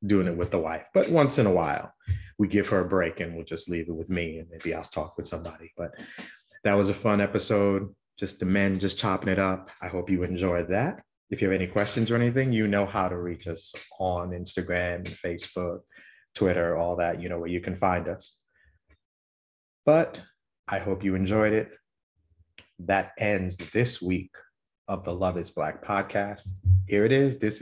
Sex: male